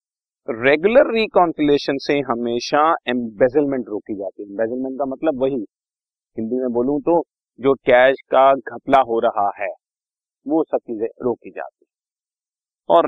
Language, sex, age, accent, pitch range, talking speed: Hindi, male, 40-59, native, 115-160 Hz, 140 wpm